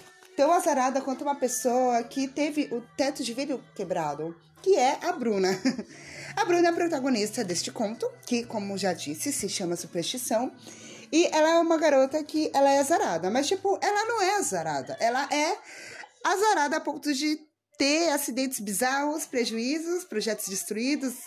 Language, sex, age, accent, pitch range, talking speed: Portuguese, female, 20-39, Brazilian, 220-330 Hz, 160 wpm